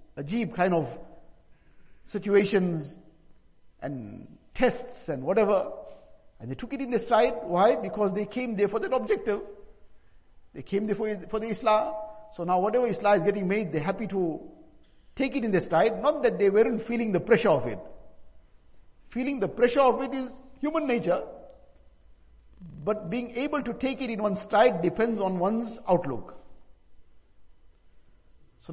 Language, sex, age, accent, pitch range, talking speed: English, male, 60-79, Indian, 165-225 Hz, 155 wpm